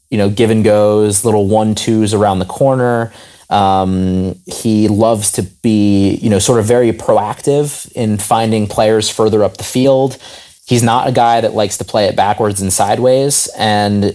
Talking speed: 175 wpm